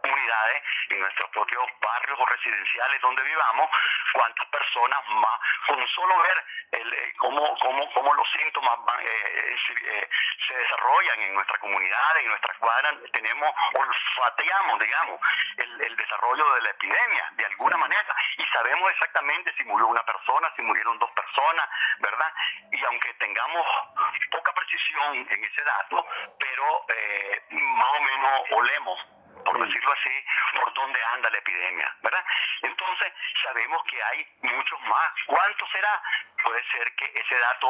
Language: Spanish